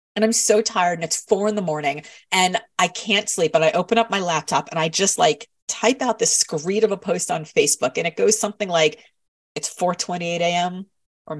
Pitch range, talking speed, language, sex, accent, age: 170-230 Hz, 220 wpm, English, female, American, 30-49